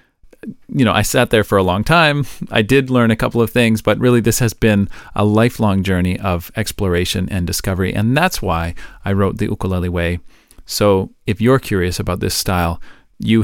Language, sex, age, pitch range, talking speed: English, male, 40-59, 100-135 Hz, 195 wpm